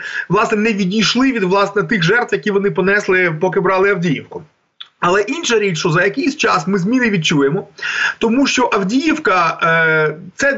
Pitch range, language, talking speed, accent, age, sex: 180-235 Hz, Ukrainian, 155 wpm, native, 30-49, male